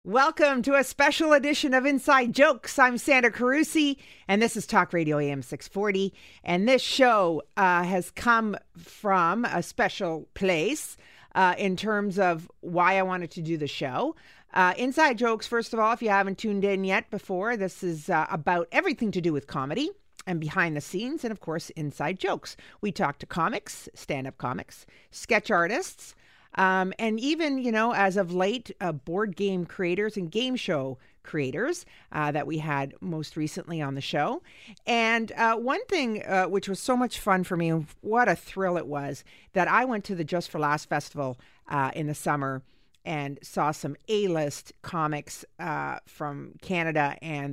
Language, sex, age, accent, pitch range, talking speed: English, female, 50-69, American, 150-220 Hz, 180 wpm